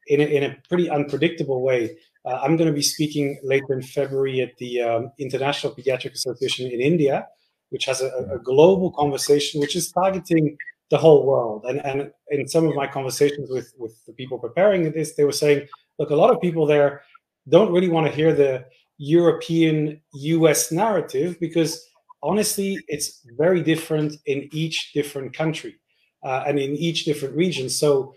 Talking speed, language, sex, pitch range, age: 175 wpm, English, male, 140-170 Hz, 30-49